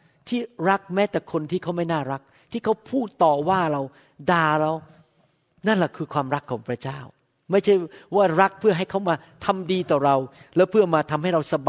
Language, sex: Thai, male